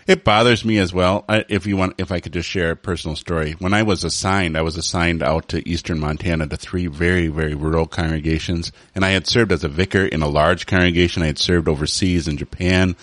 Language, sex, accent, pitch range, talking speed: English, male, American, 85-100 Hz, 230 wpm